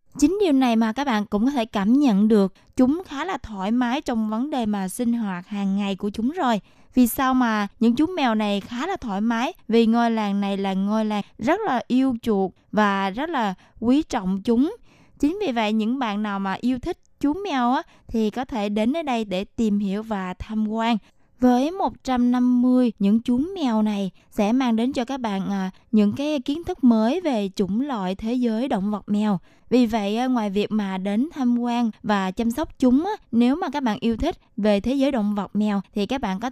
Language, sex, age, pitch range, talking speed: Vietnamese, female, 20-39, 210-260 Hz, 215 wpm